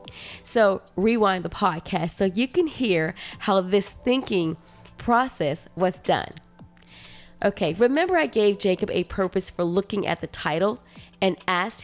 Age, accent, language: 20-39, American, English